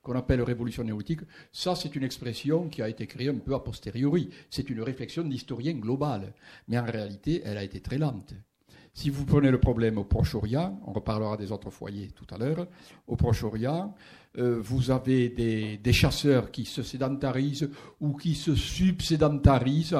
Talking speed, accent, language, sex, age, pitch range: 175 wpm, French, French, male, 60-79, 120-160 Hz